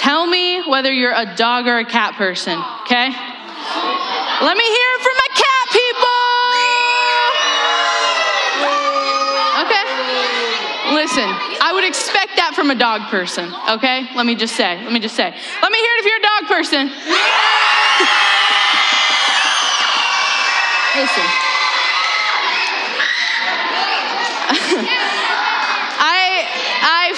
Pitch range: 255-410 Hz